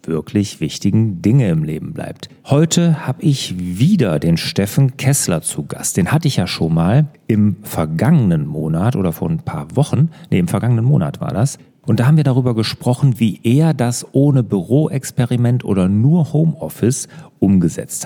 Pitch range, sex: 110-160 Hz, male